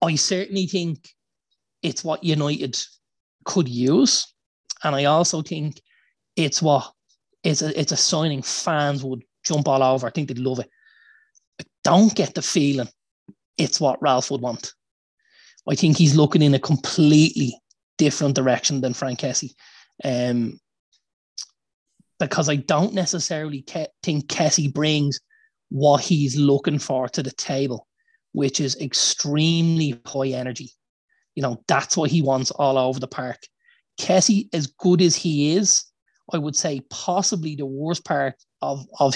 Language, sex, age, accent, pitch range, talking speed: English, male, 30-49, Irish, 135-165 Hz, 145 wpm